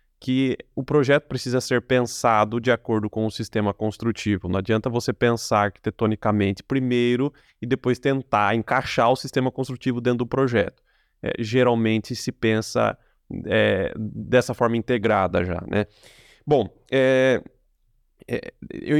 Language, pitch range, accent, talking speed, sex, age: Portuguese, 110-130 Hz, Brazilian, 135 wpm, male, 20-39